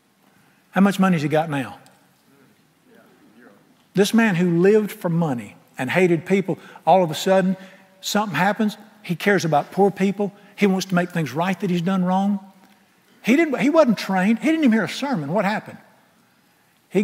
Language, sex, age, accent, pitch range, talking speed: English, male, 50-69, American, 150-195 Hz, 180 wpm